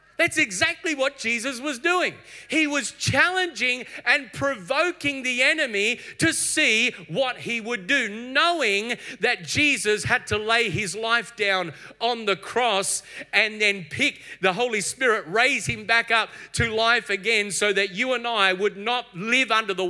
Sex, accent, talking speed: male, Australian, 165 wpm